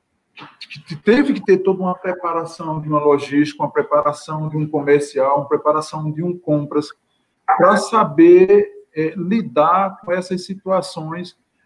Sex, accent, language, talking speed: male, Brazilian, Portuguese, 140 wpm